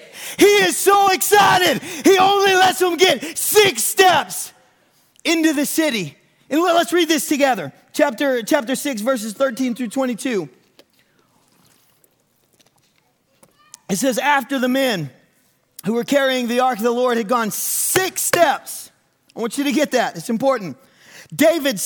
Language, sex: English, male